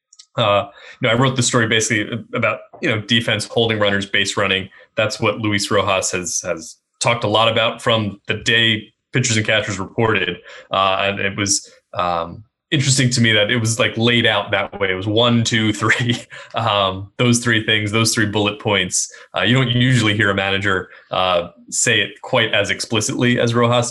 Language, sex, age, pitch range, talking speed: English, male, 20-39, 100-120 Hz, 195 wpm